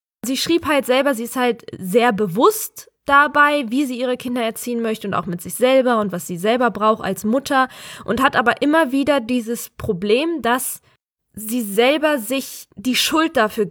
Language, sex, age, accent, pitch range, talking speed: German, female, 20-39, German, 195-240 Hz, 185 wpm